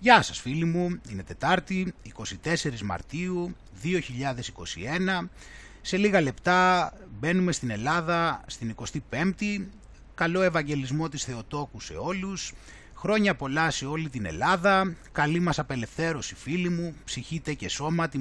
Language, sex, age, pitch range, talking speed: Greek, male, 30-49, 140-200 Hz, 120 wpm